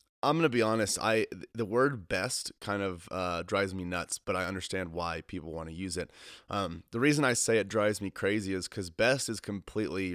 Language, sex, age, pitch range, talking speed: English, male, 30-49, 95-115 Hz, 225 wpm